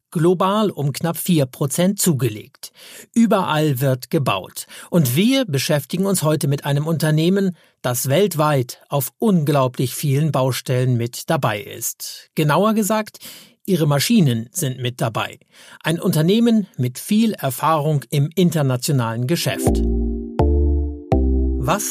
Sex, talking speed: male, 110 wpm